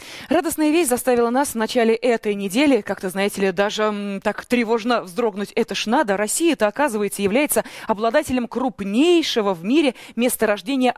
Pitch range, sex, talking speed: 205-275 Hz, female, 155 wpm